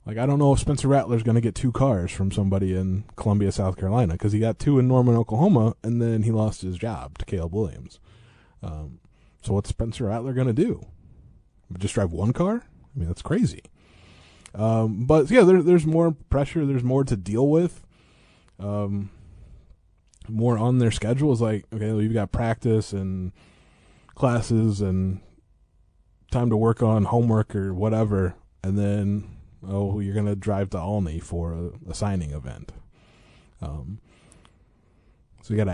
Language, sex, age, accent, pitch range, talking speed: English, male, 20-39, American, 90-115 Hz, 165 wpm